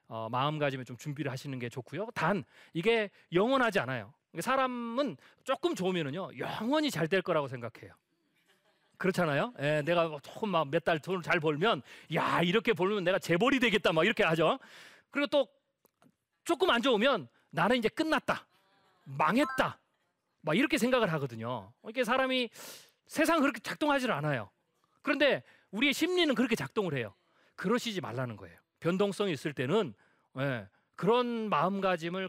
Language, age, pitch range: Korean, 40-59, 140-230 Hz